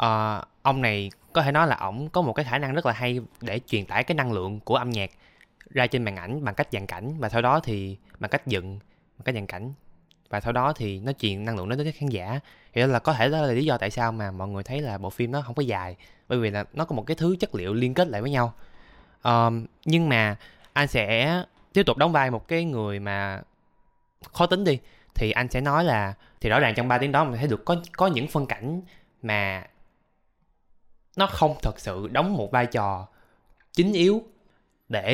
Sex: male